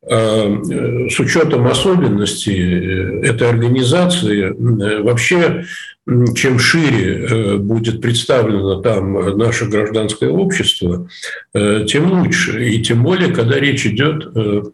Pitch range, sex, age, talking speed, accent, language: 100-130 Hz, male, 50-69, 90 wpm, native, Russian